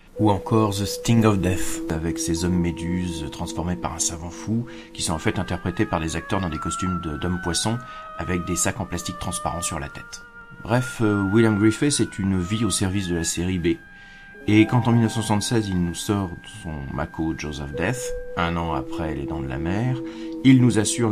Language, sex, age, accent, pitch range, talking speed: French, male, 40-59, French, 90-140 Hz, 205 wpm